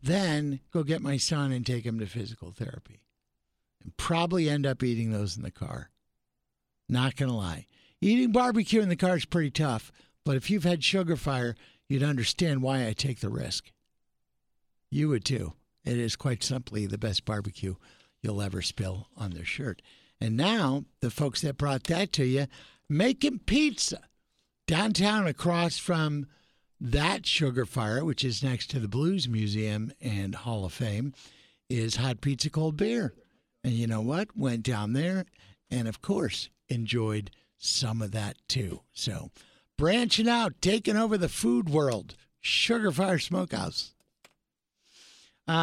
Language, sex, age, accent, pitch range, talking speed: English, male, 60-79, American, 115-170 Hz, 160 wpm